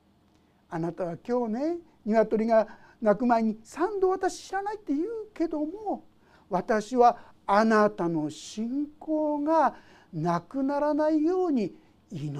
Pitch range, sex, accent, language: 185-310 Hz, male, native, Japanese